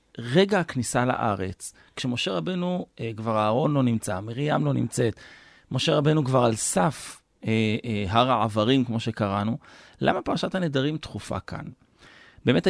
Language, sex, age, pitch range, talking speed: Hebrew, male, 30-49, 115-150 Hz, 140 wpm